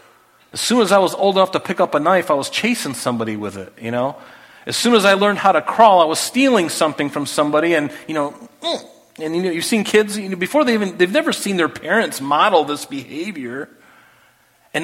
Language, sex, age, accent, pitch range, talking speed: English, male, 40-59, American, 135-205 Hz, 230 wpm